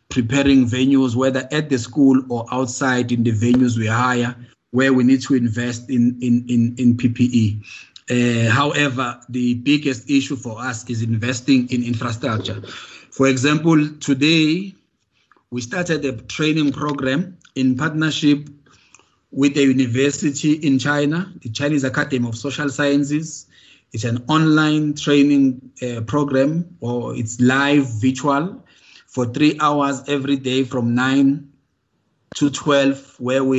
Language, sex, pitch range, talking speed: English, male, 120-140 Hz, 130 wpm